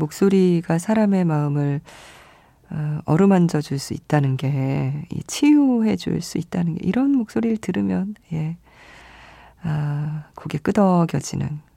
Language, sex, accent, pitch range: Korean, female, native, 145-190 Hz